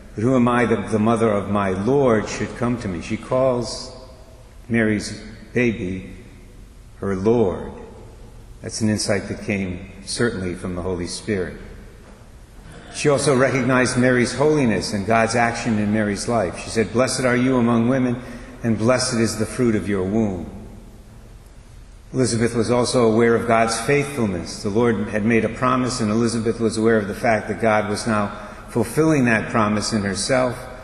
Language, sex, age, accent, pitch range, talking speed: English, male, 60-79, American, 105-120 Hz, 165 wpm